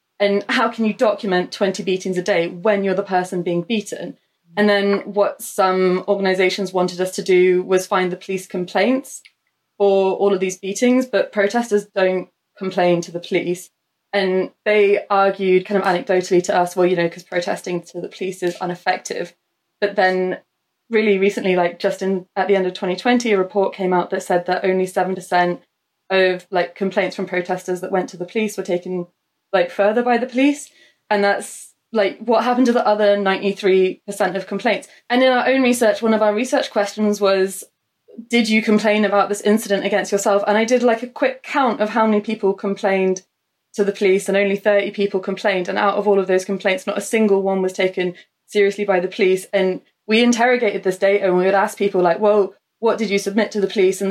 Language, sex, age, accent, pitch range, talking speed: English, female, 20-39, British, 185-210 Hz, 205 wpm